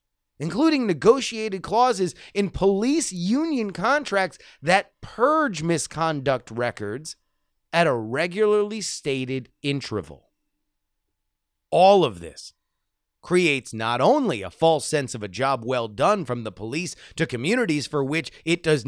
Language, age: English, 30-49